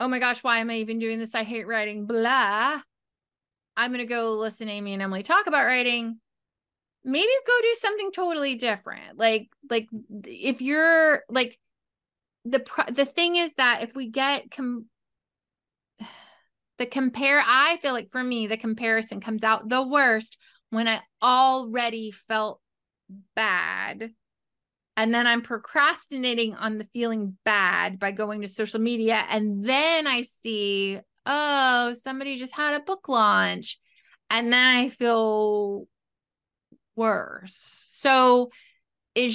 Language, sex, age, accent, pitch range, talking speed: English, female, 20-39, American, 220-275 Hz, 140 wpm